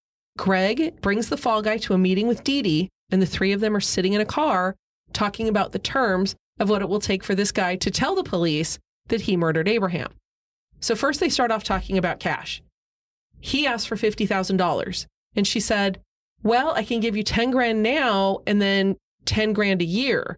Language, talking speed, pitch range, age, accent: English, 205 wpm, 185-225 Hz, 30-49, American